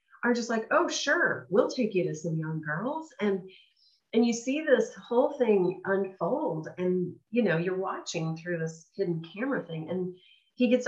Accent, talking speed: American, 180 wpm